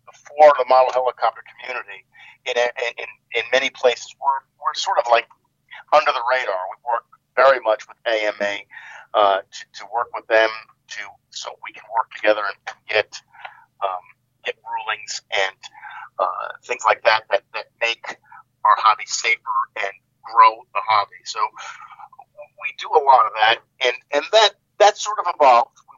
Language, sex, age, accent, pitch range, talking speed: English, male, 50-69, American, 115-175 Hz, 165 wpm